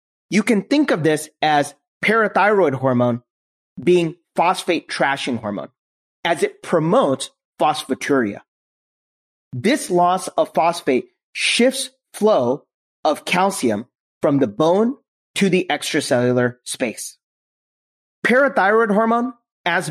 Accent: American